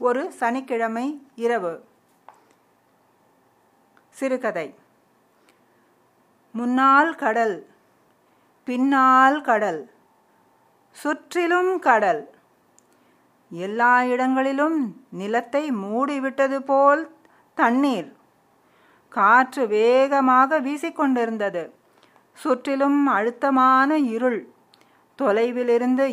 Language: Tamil